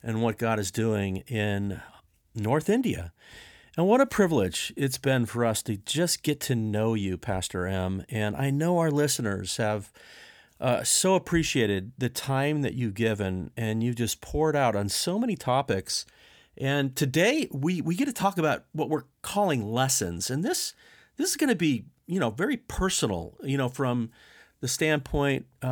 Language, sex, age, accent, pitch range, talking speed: English, male, 40-59, American, 110-155 Hz, 175 wpm